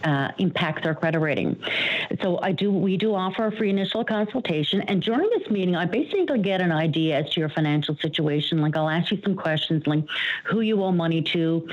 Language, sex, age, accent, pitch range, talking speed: English, female, 50-69, American, 155-190 Hz, 210 wpm